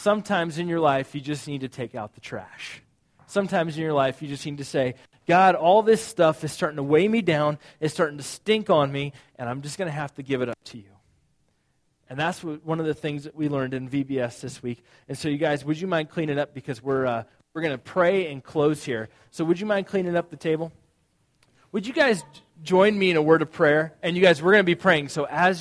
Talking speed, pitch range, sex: 260 wpm, 140-190 Hz, male